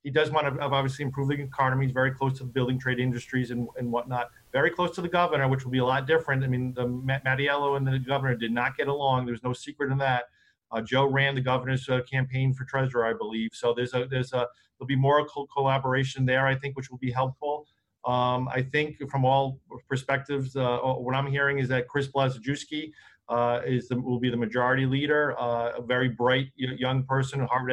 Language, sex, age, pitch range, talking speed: English, male, 40-59, 125-140 Hz, 230 wpm